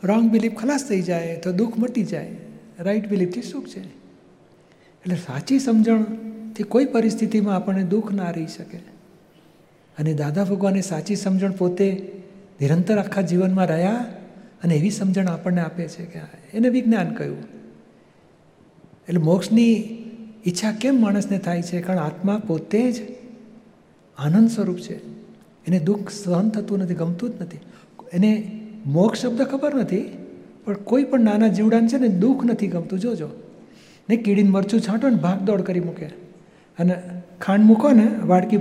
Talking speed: 150 wpm